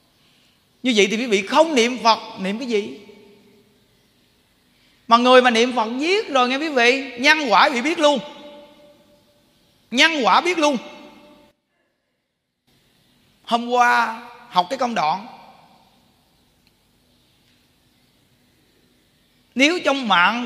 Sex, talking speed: male, 115 wpm